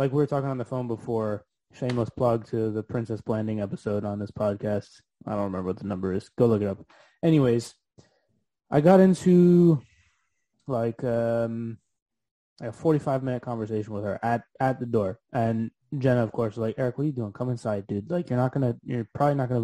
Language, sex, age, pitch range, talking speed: English, male, 20-39, 110-135 Hz, 215 wpm